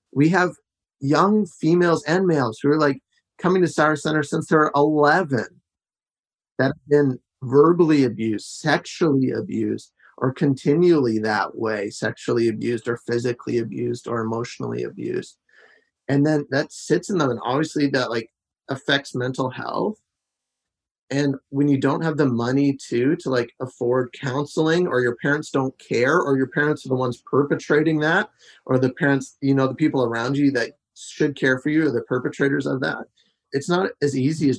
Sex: male